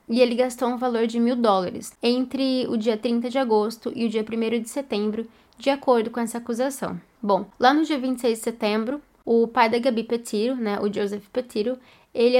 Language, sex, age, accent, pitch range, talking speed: Portuguese, female, 10-29, Brazilian, 225-255 Hz, 205 wpm